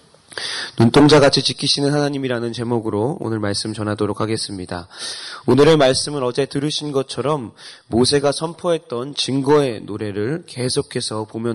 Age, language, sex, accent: 20-39, Korean, male, native